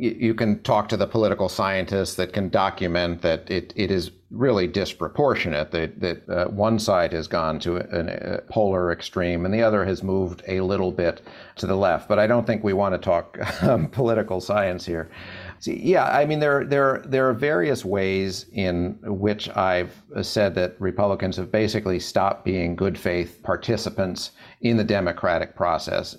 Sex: male